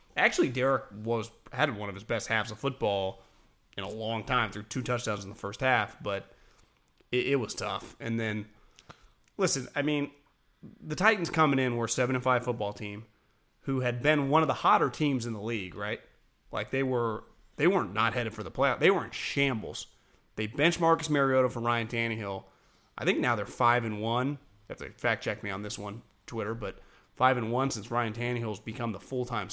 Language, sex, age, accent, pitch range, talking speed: English, male, 30-49, American, 115-155 Hz, 205 wpm